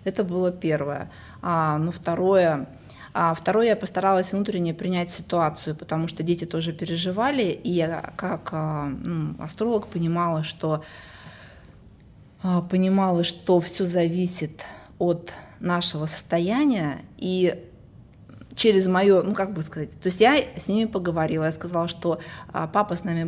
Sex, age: female, 20-39